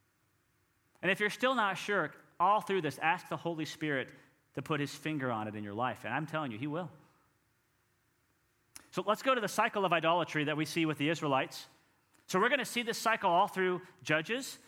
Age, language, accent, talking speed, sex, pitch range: 30-49, English, American, 215 wpm, male, 145-210 Hz